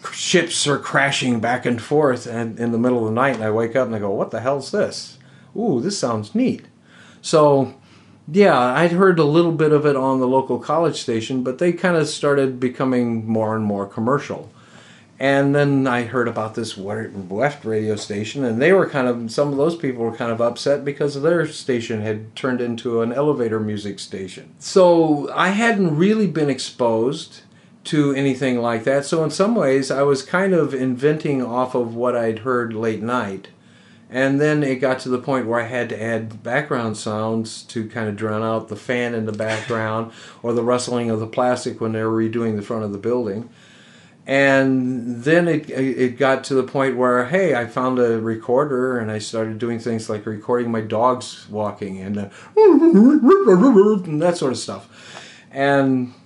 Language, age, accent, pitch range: English, 50-69, American, 115-145 Hz